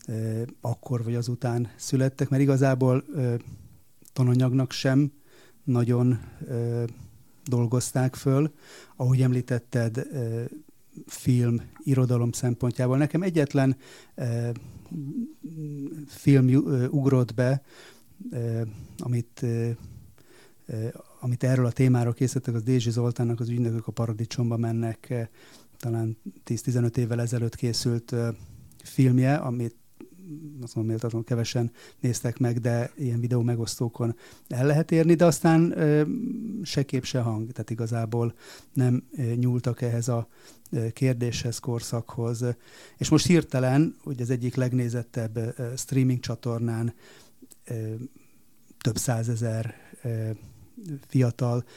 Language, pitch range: Hungarian, 115-135 Hz